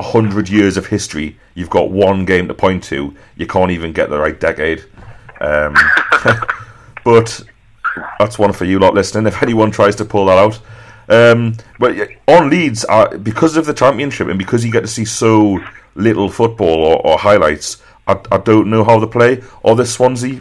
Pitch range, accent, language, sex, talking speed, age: 90-115 Hz, British, English, male, 190 wpm, 30-49